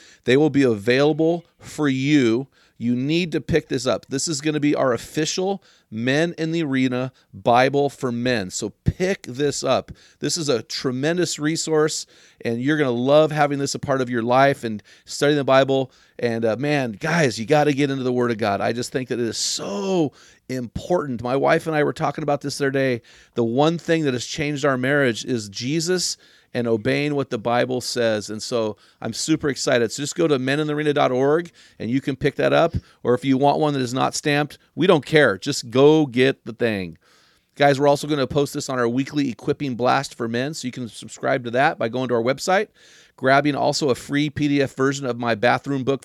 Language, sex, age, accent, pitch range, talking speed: English, male, 40-59, American, 120-145 Hz, 220 wpm